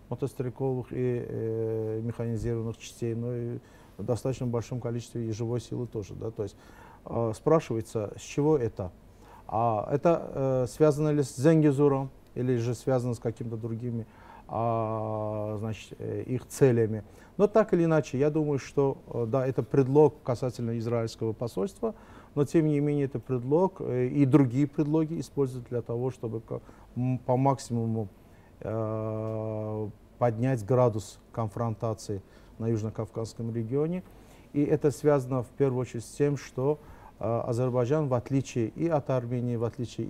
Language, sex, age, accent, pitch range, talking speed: Russian, male, 40-59, native, 115-135 Hz, 140 wpm